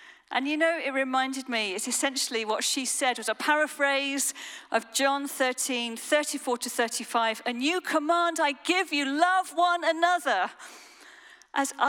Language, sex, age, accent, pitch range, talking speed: English, female, 40-59, British, 240-305 Hz, 150 wpm